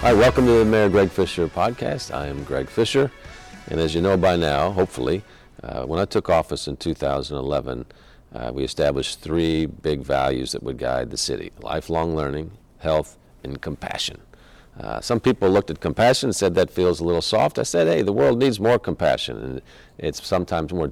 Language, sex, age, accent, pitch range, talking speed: English, male, 50-69, American, 70-90 Hz, 190 wpm